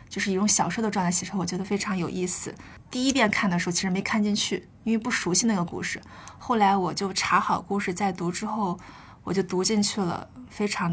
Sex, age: female, 20-39